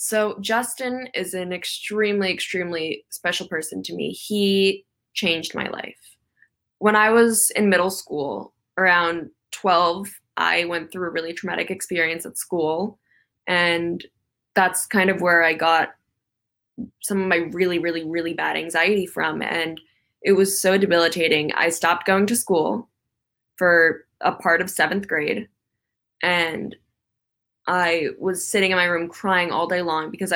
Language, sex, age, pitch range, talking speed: English, female, 10-29, 170-195 Hz, 150 wpm